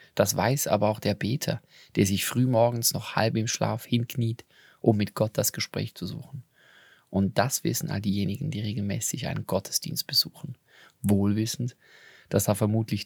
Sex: male